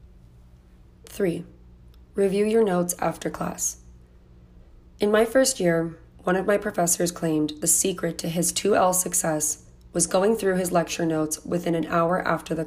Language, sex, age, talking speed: English, female, 30-49, 150 wpm